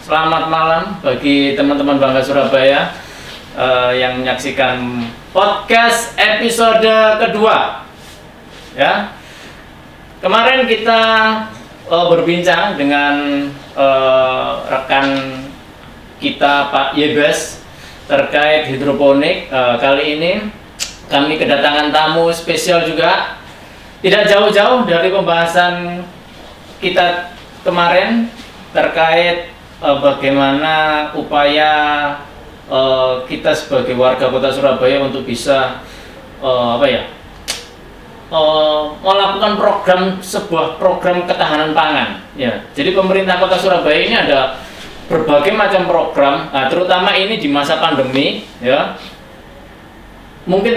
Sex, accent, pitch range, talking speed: male, native, 135-185 Hz, 90 wpm